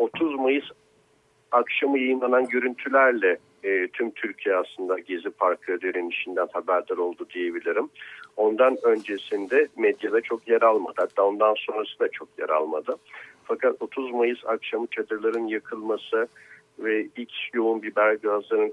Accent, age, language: native, 50-69, Turkish